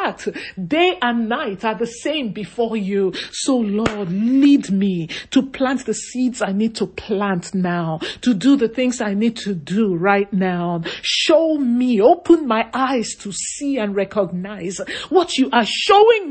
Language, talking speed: English, 160 wpm